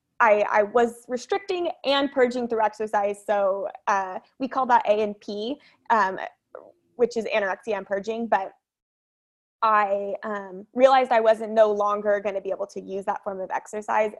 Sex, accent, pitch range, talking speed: female, American, 200-250 Hz, 165 wpm